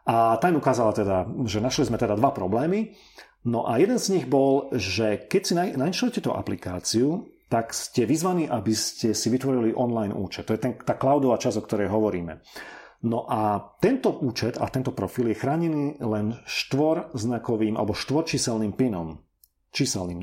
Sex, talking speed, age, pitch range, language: male, 165 wpm, 40-59, 110-150 Hz, Slovak